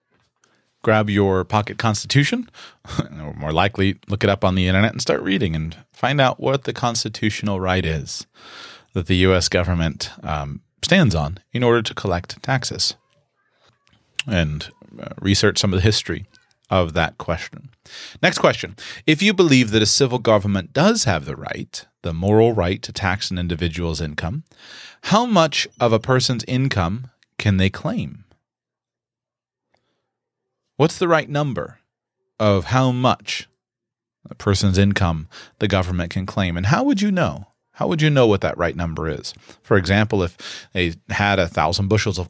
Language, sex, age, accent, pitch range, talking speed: English, male, 30-49, American, 95-120 Hz, 160 wpm